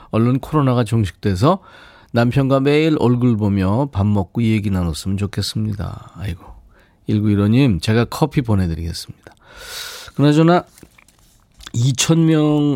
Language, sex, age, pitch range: Korean, male, 40-59, 105-150 Hz